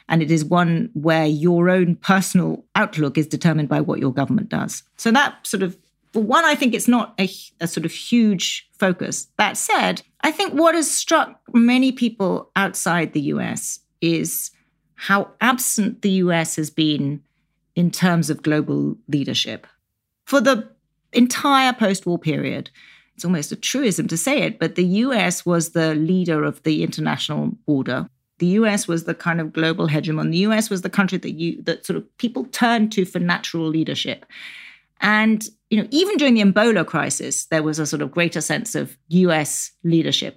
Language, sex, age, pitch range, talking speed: English, female, 40-59, 165-225 Hz, 180 wpm